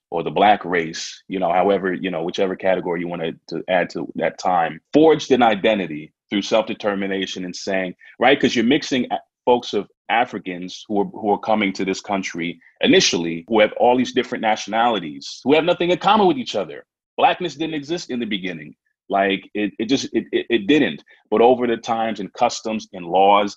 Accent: American